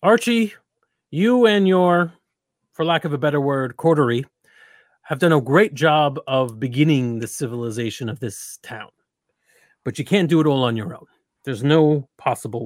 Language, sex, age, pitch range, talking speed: English, male, 40-59, 130-185 Hz, 165 wpm